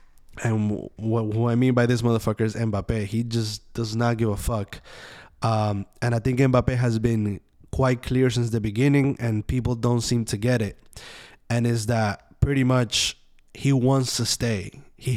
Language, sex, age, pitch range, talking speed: English, male, 20-39, 110-125 Hz, 180 wpm